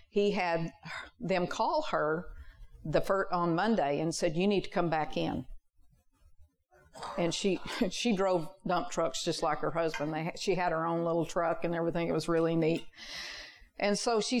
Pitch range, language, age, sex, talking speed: 170-220 Hz, English, 50-69, female, 185 wpm